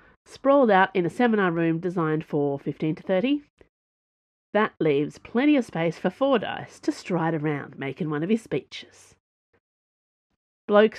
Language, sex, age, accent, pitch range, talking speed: English, female, 40-59, Australian, 160-265 Hz, 145 wpm